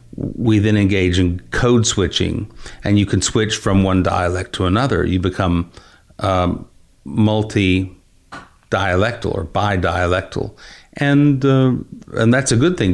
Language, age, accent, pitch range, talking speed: English, 50-69, American, 90-110 Hz, 125 wpm